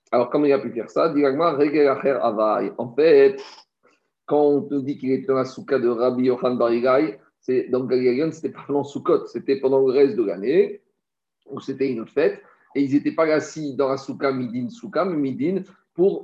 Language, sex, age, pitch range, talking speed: French, male, 50-69, 135-155 Hz, 190 wpm